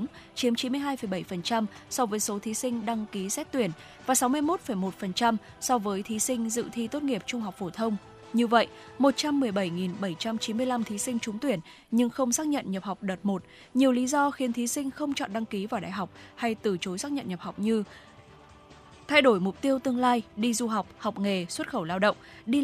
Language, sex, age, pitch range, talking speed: Vietnamese, female, 20-39, 200-255 Hz, 205 wpm